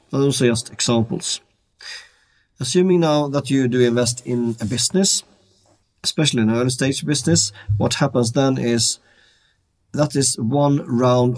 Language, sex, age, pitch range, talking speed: English, male, 40-59, 115-135 Hz, 140 wpm